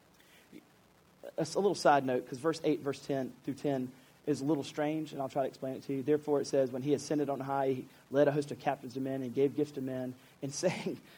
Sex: male